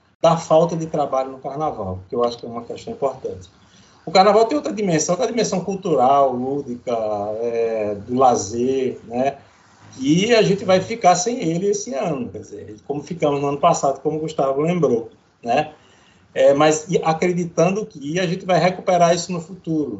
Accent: Brazilian